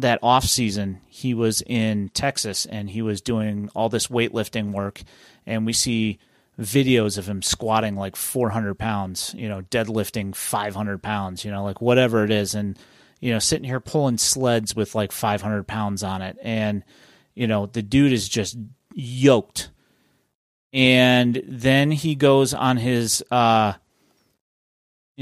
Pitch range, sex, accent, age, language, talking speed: 110-130 Hz, male, American, 30-49, English, 150 wpm